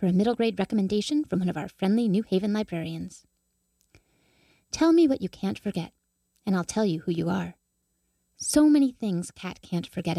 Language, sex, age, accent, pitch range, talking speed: English, female, 30-49, American, 170-195 Hz, 190 wpm